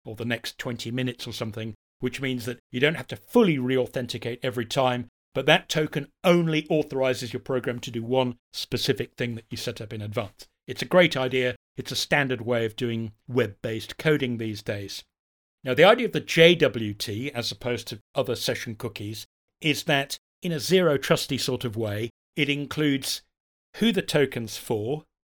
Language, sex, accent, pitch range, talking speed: English, male, British, 120-150 Hz, 185 wpm